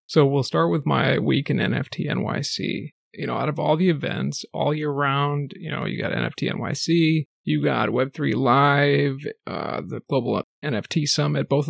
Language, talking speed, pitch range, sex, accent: English, 180 wpm, 140-155 Hz, male, American